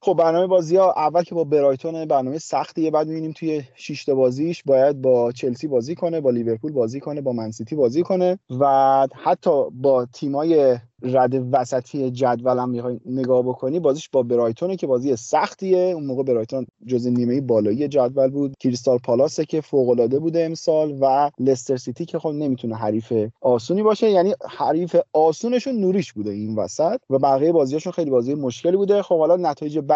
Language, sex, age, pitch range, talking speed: Persian, male, 30-49, 120-160 Hz, 165 wpm